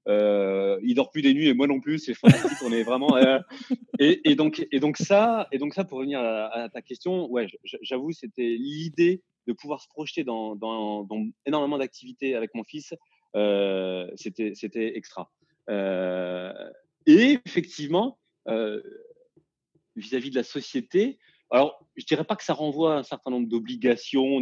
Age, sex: 30-49, male